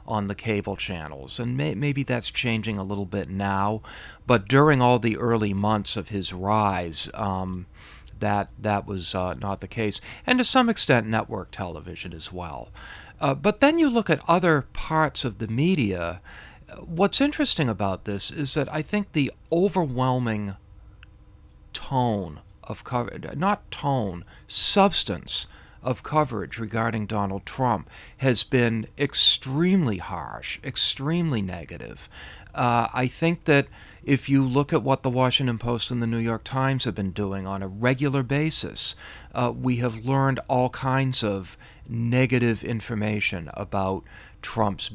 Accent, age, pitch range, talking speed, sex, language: American, 40-59, 100-135 Hz, 145 wpm, male, English